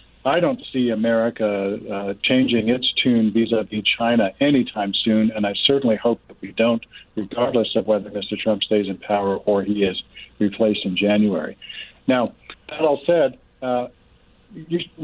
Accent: American